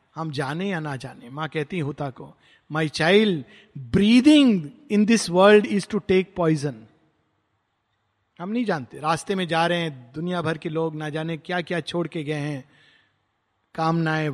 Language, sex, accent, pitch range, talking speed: Hindi, male, native, 145-190 Hz, 165 wpm